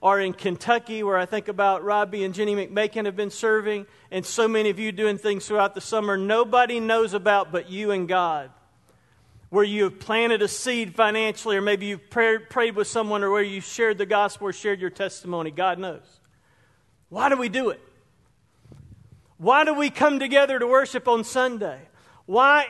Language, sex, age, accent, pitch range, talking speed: English, male, 40-59, American, 195-255 Hz, 190 wpm